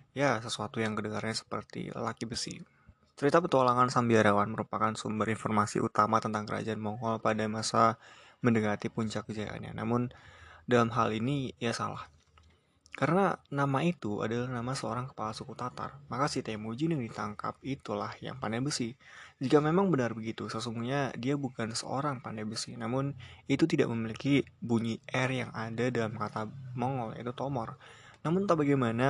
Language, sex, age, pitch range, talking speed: Indonesian, male, 20-39, 110-130 Hz, 150 wpm